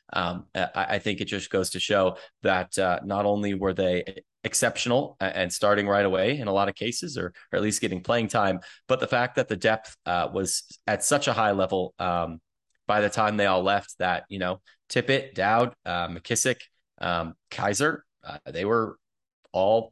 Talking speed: 195 wpm